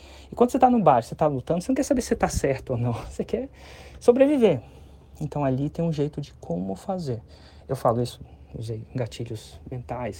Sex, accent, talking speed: male, Brazilian, 210 wpm